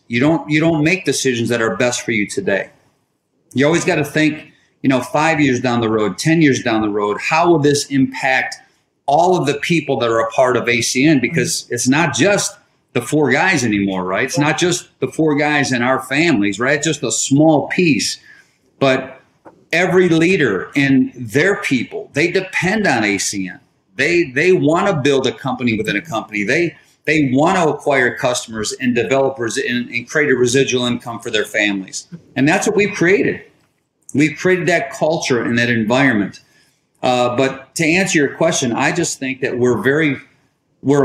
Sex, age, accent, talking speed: male, 40-59, American, 185 wpm